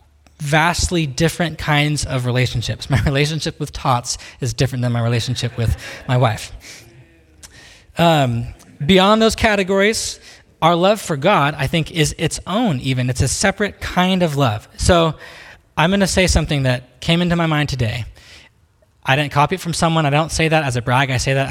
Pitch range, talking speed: 115-155 Hz, 180 wpm